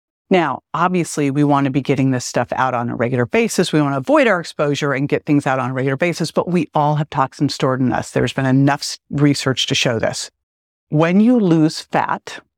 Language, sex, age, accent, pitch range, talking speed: English, female, 50-69, American, 140-175 Hz, 215 wpm